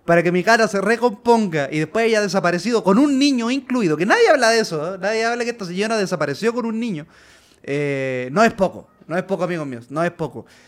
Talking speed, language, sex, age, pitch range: 230 wpm, Spanish, male, 20-39, 145-205 Hz